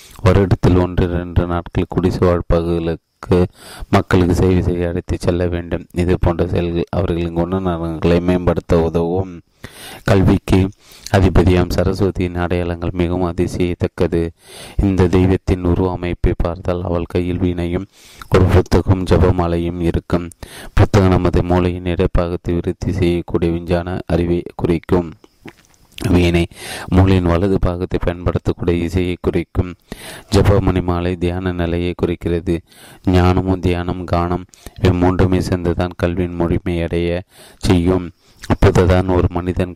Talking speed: 105 wpm